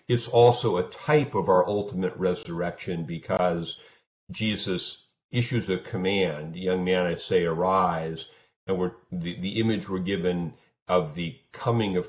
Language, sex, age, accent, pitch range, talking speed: English, male, 50-69, American, 90-110 Hz, 150 wpm